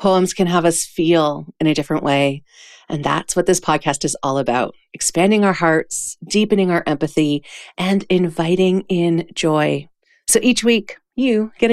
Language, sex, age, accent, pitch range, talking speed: English, female, 30-49, American, 145-190 Hz, 165 wpm